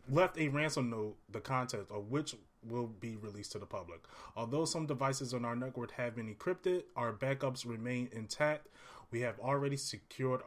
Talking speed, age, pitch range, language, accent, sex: 180 wpm, 30-49, 105-140 Hz, English, American, male